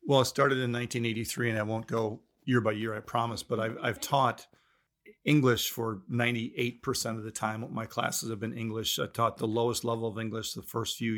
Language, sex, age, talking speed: English, male, 40-59, 210 wpm